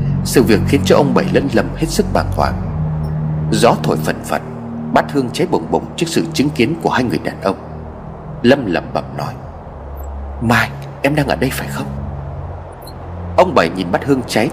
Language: Vietnamese